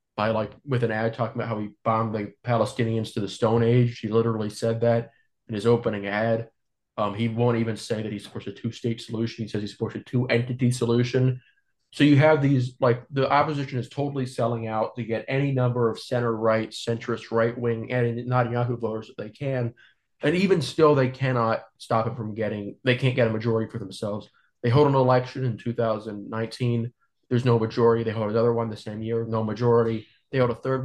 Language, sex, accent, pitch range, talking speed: English, male, American, 110-125 Hz, 210 wpm